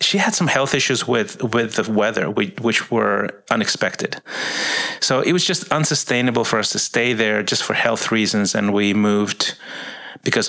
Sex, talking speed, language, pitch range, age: male, 170 wpm, English, 105-125 Hz, 30-49